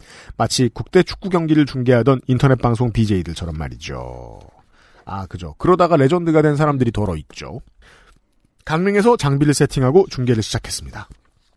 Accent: native